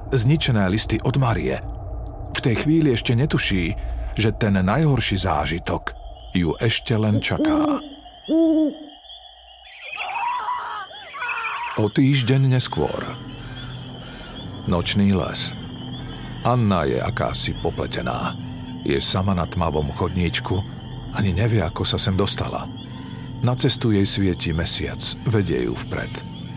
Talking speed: 100 wpm